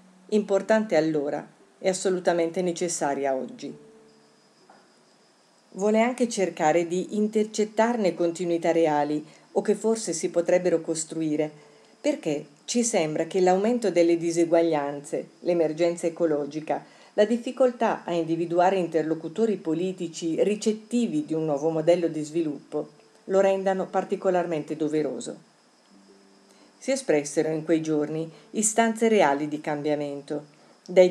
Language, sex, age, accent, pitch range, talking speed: Italian, female, 50-69, native, 155-185 Hz, 105 wpm